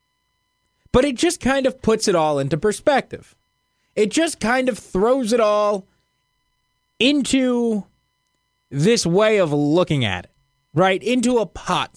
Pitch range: 145-220 Hz